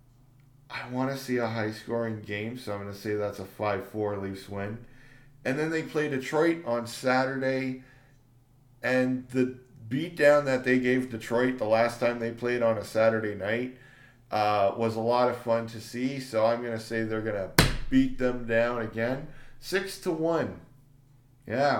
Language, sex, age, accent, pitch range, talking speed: English, male, 40-59, American, 120-140 Hz, 175 wpm